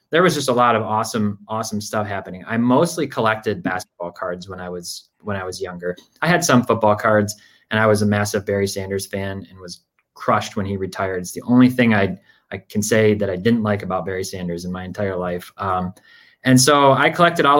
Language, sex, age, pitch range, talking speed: English, male, 20-39, 95-120 Hz, 225 wpm